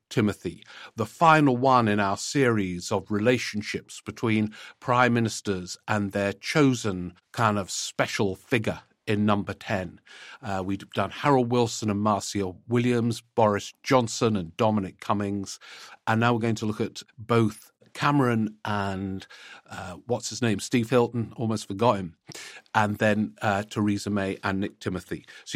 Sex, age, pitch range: male, 50-69, 100-120 Hz